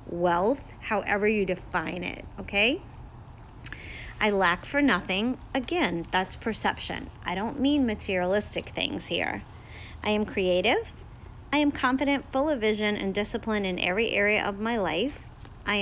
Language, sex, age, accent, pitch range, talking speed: English, female, 30-49, American, 185-235 Hz, 140 wpm